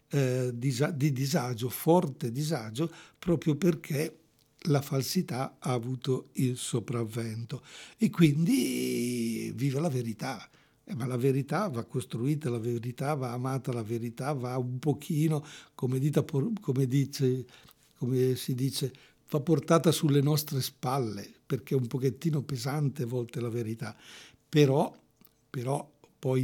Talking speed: 130 wpm